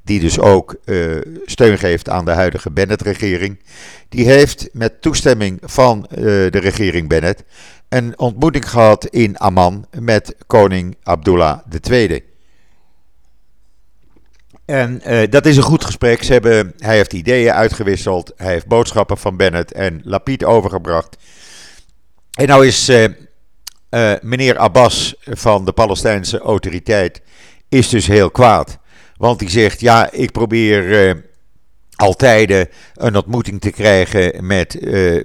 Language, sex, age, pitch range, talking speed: Dutch, male, 50-69, 90-115 Hz, 135 wpm